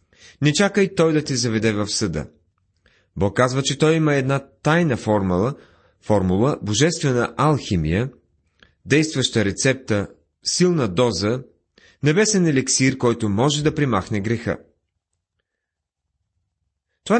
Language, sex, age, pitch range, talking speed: Bulgarian, male, 30-49, 100-140 Hz, 110 wpm